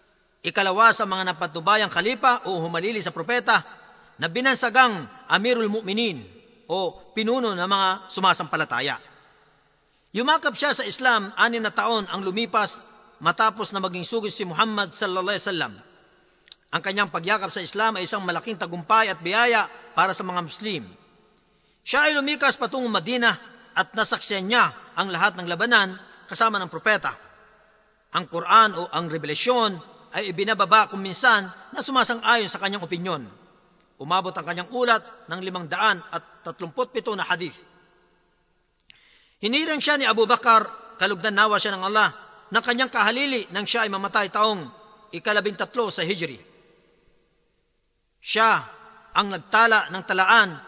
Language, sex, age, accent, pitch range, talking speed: Filipino, male, 50-69, native, 185-225 Hz, 135 wpm